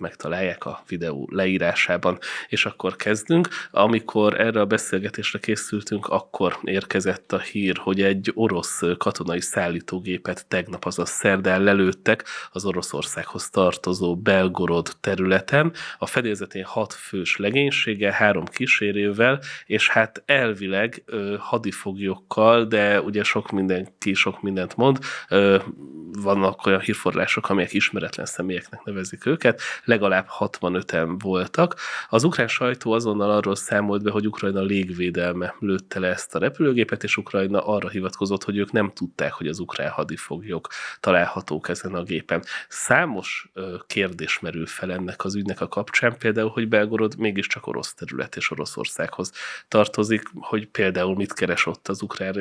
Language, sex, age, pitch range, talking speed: Hungarian, male, 20-39, 95-110 Hz, 130 wpm